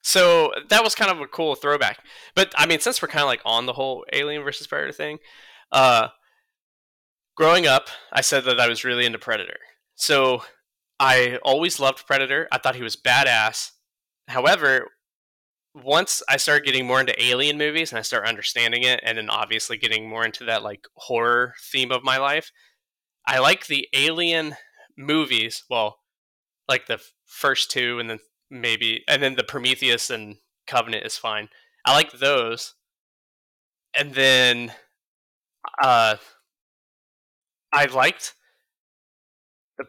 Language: English